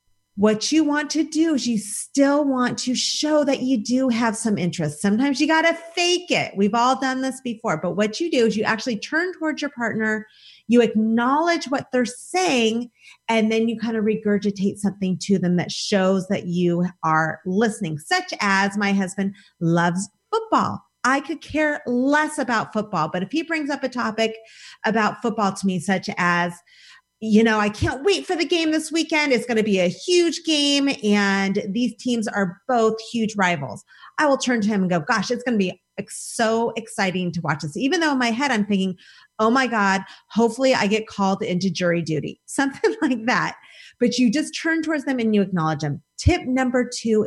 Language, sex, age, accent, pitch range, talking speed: English, female, 30-49, American, 195-265 Hz, 200 wpm